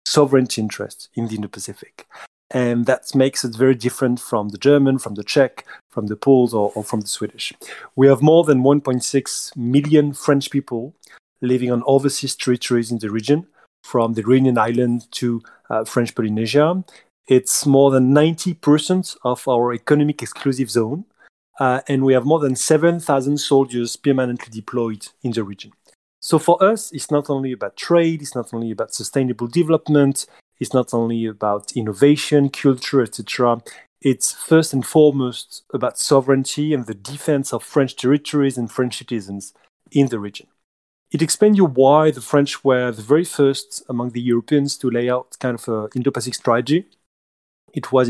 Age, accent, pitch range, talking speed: 30-49, French, 120-145 Hz, 165 wpm